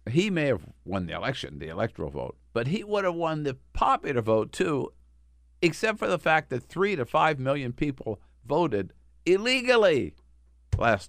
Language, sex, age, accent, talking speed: English, male, 60-79, American, 170 wpm